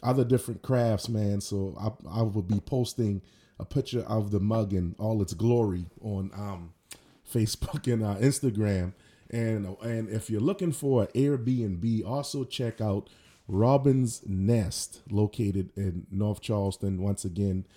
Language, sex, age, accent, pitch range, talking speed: English, male, 30-49, American, 100-125 Hz, 150 wpm